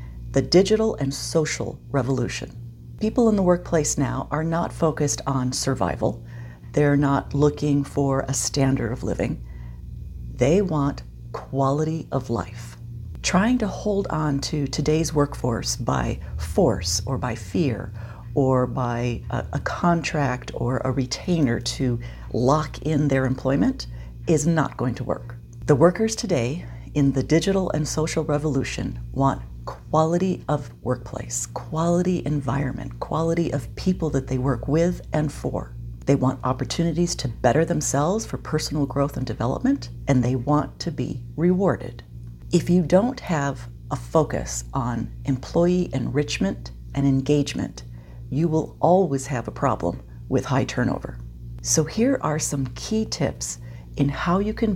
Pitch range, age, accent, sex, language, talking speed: 120-155 Hz, 40-59, American, female, English, 140 wpm